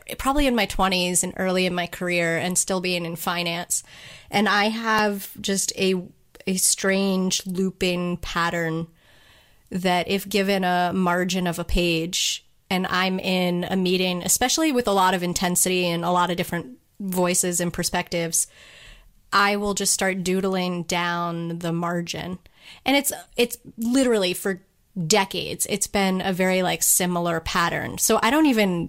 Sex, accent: female, American